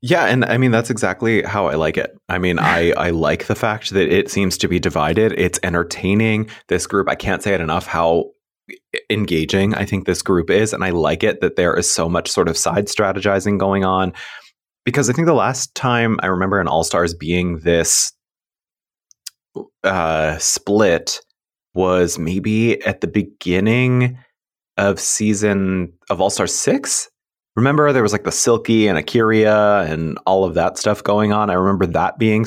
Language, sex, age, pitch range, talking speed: English, male, 30-49, 90-110 Hz, 180 wpm